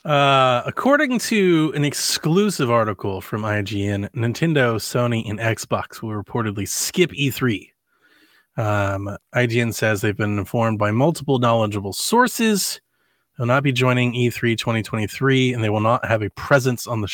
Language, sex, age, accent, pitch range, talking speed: English, male, 30-49, American, 115-150 Hz, 145 wpm